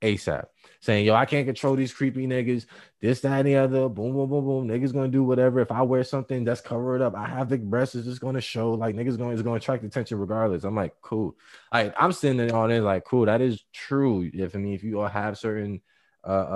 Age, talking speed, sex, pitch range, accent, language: 20-39, 255 wpm, male, 100-140 Hz, American, English